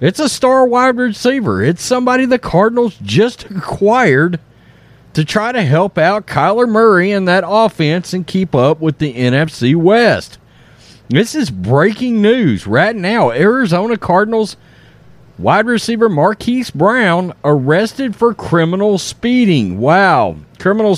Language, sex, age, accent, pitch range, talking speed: English, male, 40-59, American, 135-230 Hz, 130 wpm